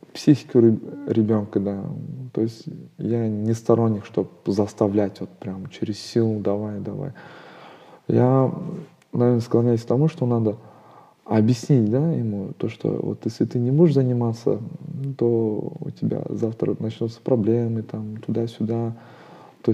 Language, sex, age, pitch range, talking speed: Russian, male, 20-39, 110-130 Hz, 135 wpm